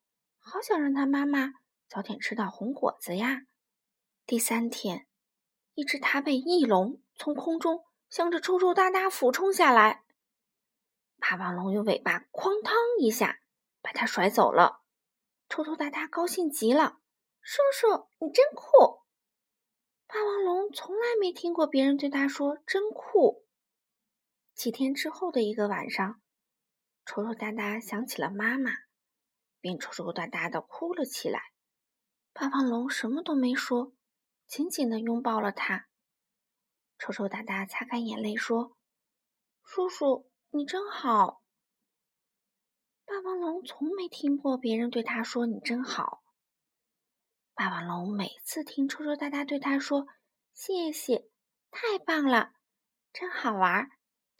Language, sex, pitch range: Chinese, female, 225-320 Hz